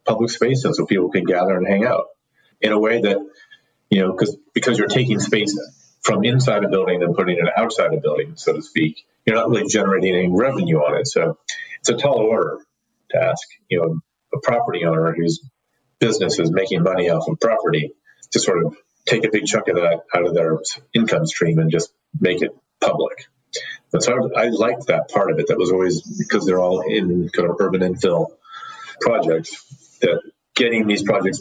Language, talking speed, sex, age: English, 205 wpm, male, 40-59